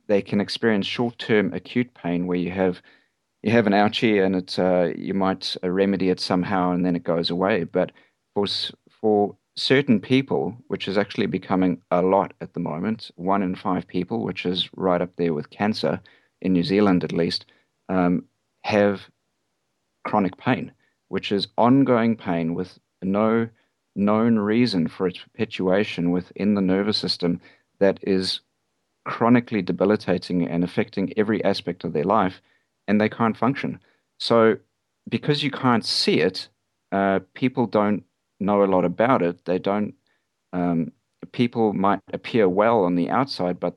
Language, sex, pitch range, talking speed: English, male, 90-110 Hz, 160 wpm